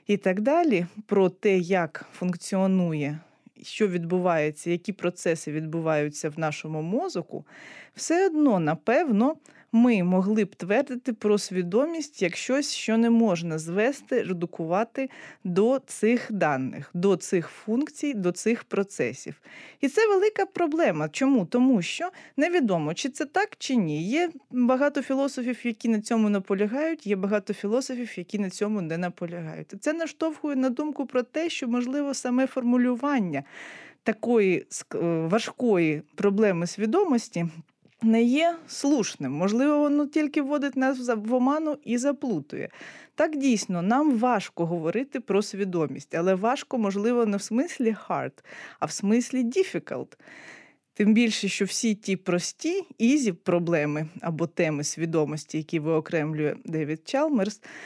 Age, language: 20-39, Ukrainian